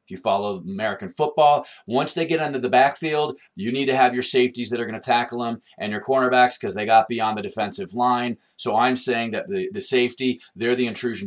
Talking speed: 225 wpm